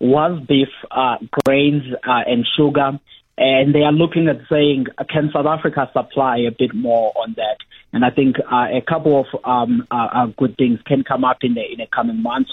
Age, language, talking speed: 30-49, English, 200 wpm